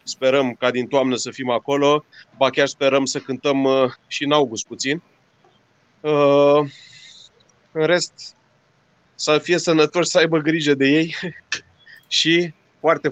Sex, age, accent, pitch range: male, 30-49, native, 125-150 Hz